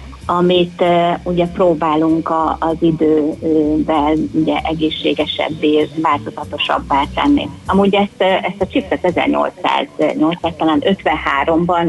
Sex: female